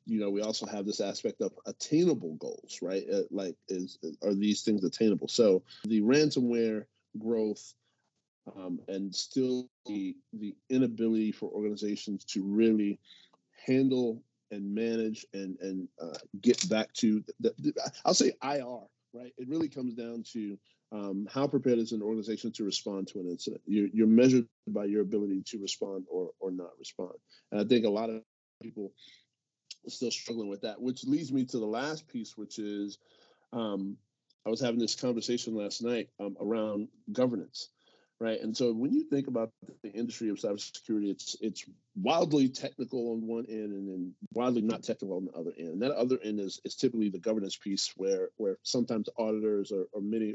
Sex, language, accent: male, English, American